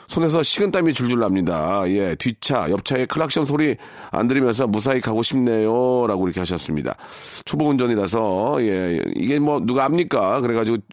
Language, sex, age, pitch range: Korean, male, 40-59, 120-165 Hz